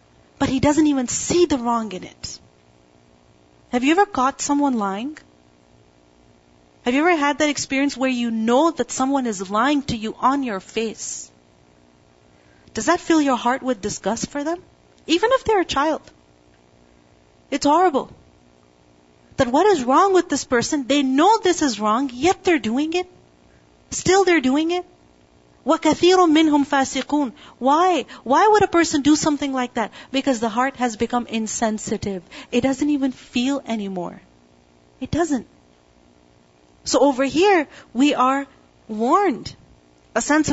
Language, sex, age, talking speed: English, female, 40-59, 145 wpm